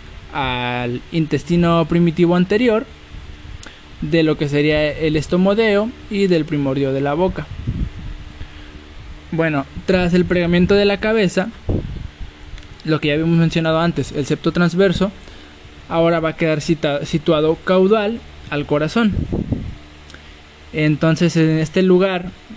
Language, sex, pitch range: Spanish, male, 145-180 Hz